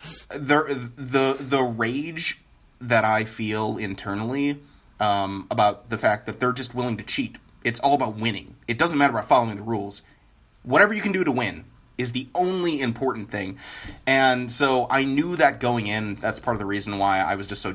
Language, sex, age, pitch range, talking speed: English, male, 30-49, 110-140 Hz, 195 wpm